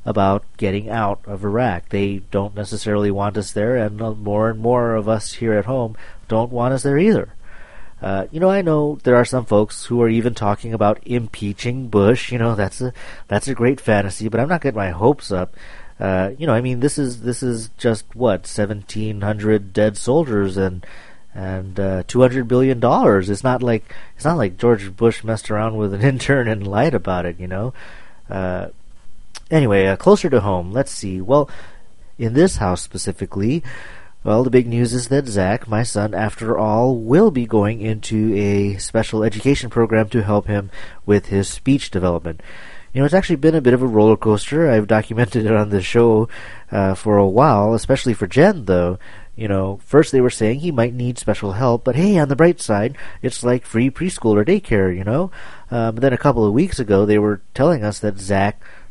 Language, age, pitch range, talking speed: English, 30-49, 100-125 Hz, 200 wpm